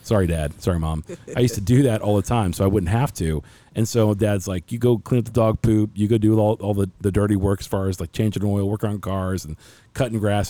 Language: English